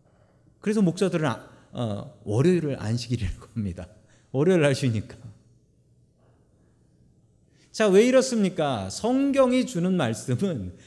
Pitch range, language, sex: 120-190 Hz, Korean, male